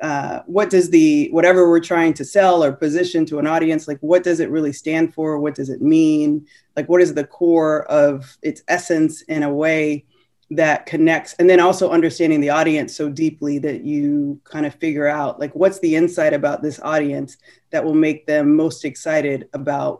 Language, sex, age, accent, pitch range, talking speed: English, female, 20-39, American, 145-165 Hz, 195 wpm